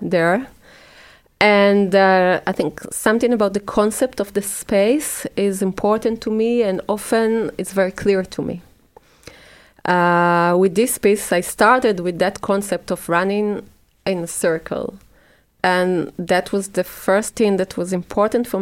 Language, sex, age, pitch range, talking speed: French, female, 30-49, 180-205 Hz, 150 wpm